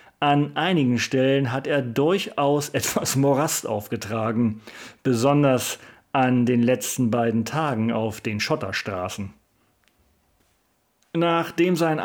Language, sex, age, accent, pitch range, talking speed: German, male, 40-59, German, 120-145 Hz, 100 wpm